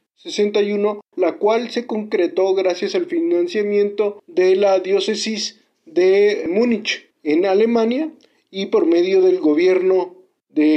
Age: 40-59